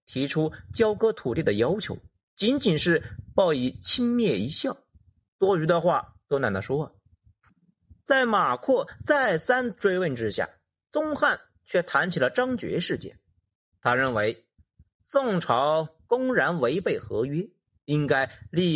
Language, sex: Chinese, male